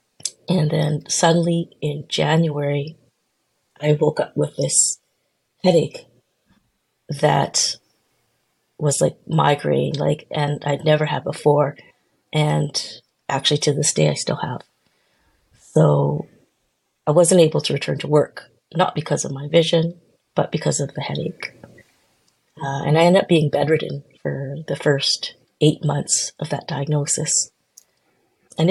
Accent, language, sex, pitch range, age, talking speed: American, English, female, 145-160 Hz, 30-49, 130 wpm